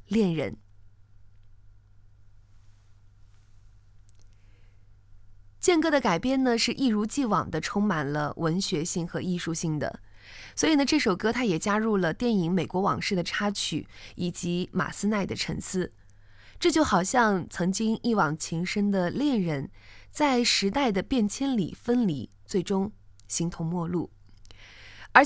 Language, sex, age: Chinese, female, 20-39